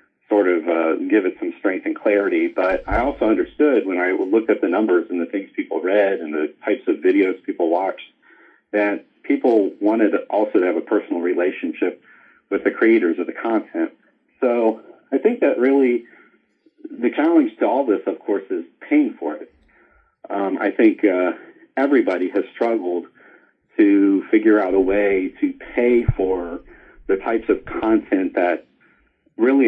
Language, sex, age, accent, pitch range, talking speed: English, male, 40-59, American, 290-345 Hz, 170 wpm